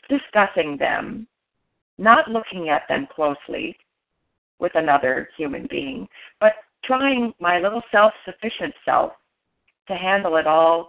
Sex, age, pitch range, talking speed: female, 40-59, 175-235 Hz, 120 wpm